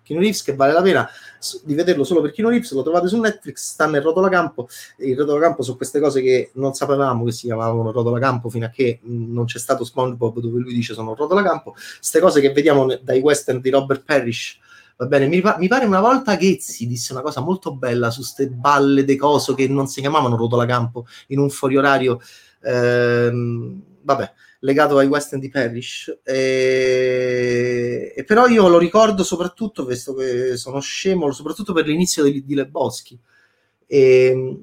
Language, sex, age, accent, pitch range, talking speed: Italian, male, 30-49, native, 125-165 Hz, 175 wpm